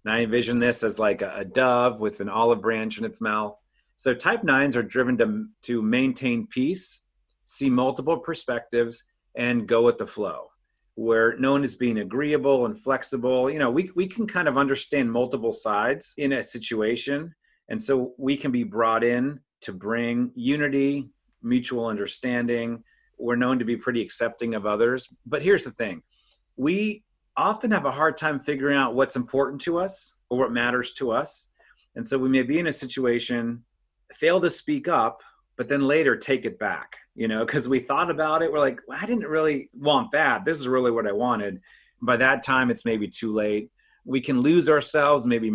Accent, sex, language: American, male, English